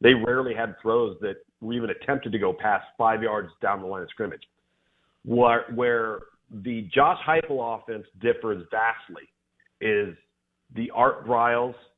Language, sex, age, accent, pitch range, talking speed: English, male, 40-59, American, 105-145 Hz, 150 wpm